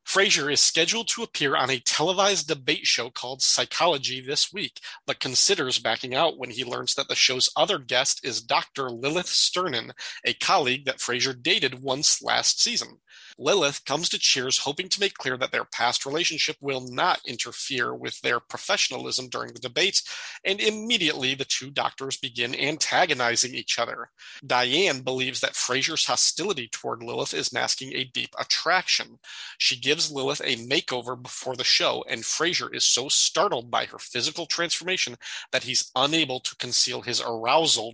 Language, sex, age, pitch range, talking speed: English, male, 40-59, 125-165 Hz, 165 wpm